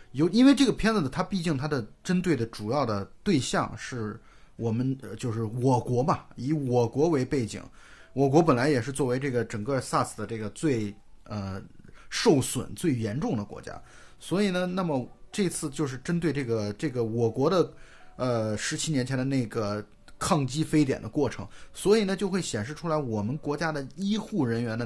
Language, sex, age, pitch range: Chinese, male, 20-39, 115-165 Hz